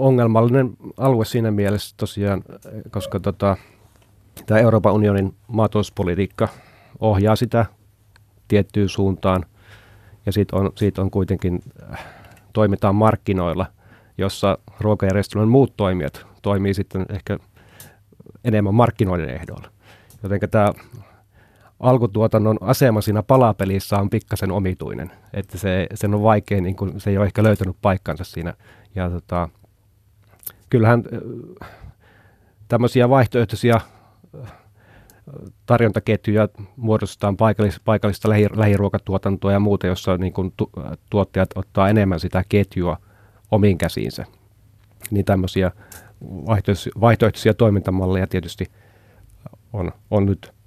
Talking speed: 100 wpm